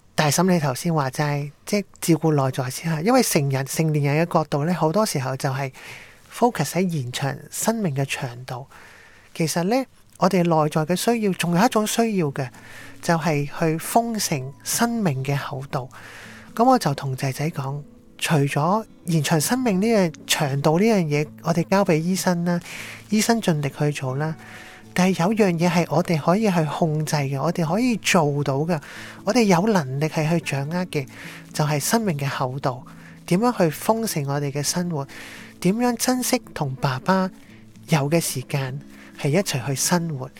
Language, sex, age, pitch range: Chinese, male, 20-39, 140-185 Hz